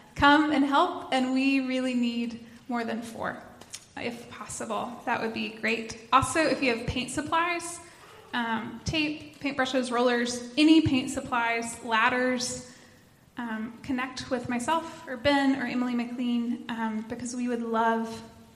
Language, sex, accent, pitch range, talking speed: English, female, American, 235-285 Hz, 145 wpm